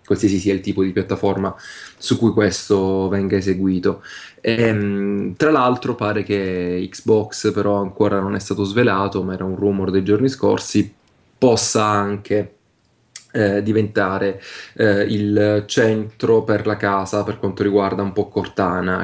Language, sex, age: Italian, male, 20-39